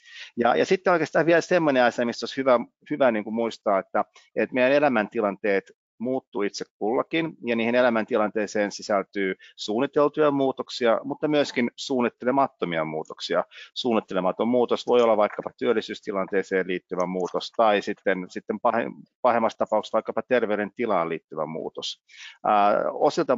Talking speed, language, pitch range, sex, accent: 130 wpm, Finnish, 95-120 Hz, male, native